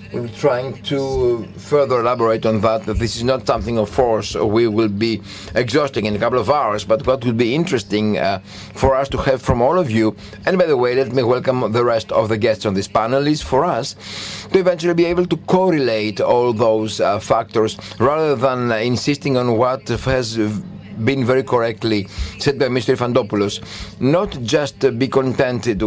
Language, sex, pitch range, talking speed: Greek, male, 110-145 Hz, 190 wpm